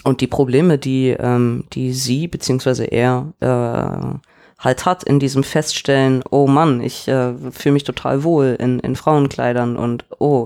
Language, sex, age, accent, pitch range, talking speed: German, female, 20-39, German, 125-150 Hz, 160 wpm